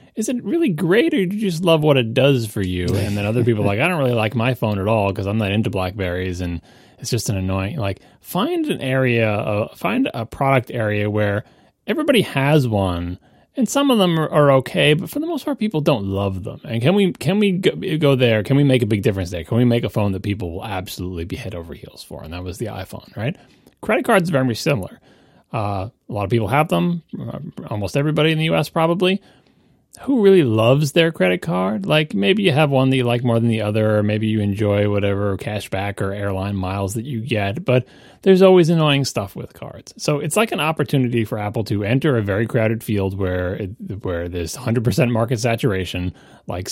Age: 30-49